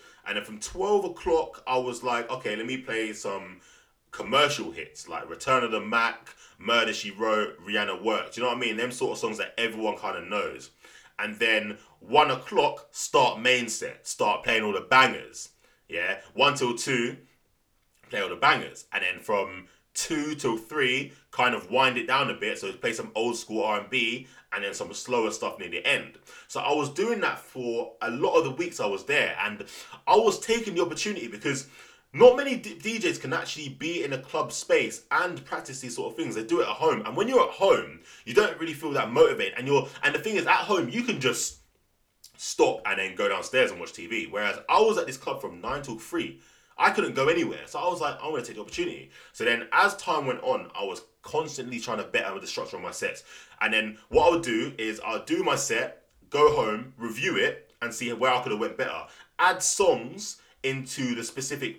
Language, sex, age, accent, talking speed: English, male, 20-39, British, 220 wpm